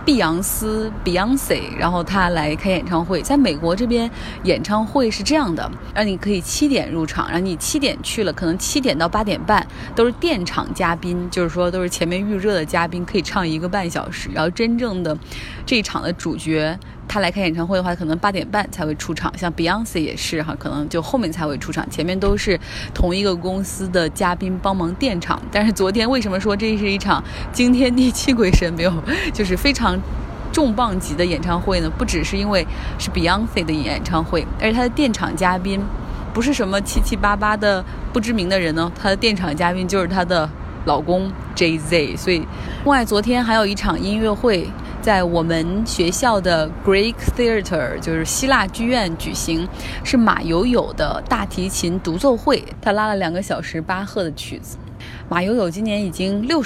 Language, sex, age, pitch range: Chinese, female, 20-39, 170-225 Hz